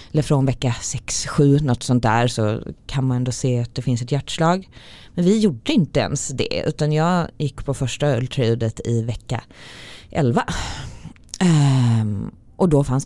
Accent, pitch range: native, 120-150 Hz